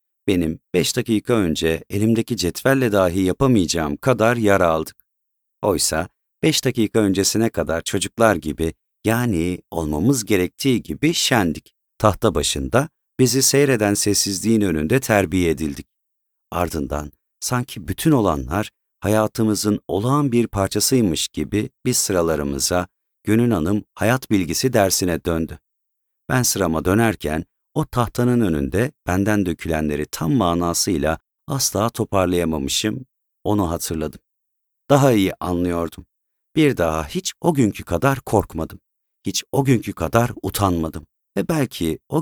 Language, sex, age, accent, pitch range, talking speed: Turkish, male, 50-69, native, 85-115 Hz, 115 wpm